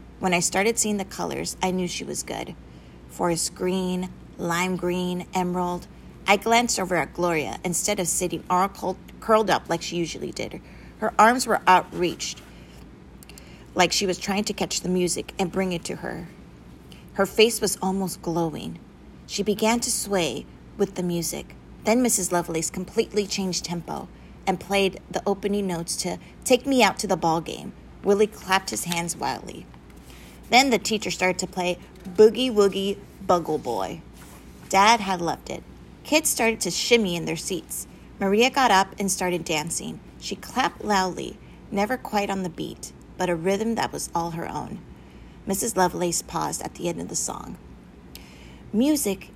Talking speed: 165 wpm